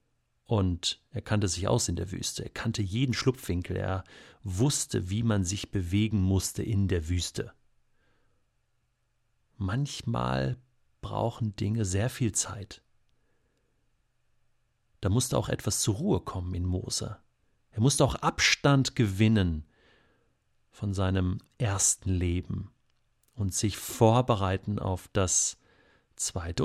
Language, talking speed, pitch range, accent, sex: German, 115 wpm, 95-125 Hz, German, male